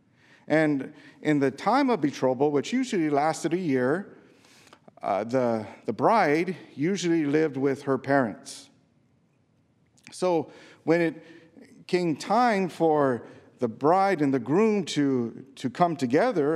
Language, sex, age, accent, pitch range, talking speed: English, male, 50-69, American, 125-160 Hz, 125 wpm